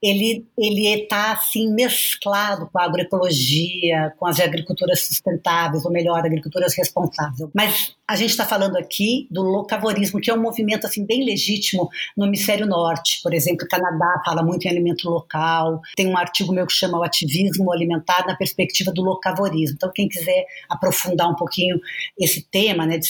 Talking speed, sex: 170 wpm, female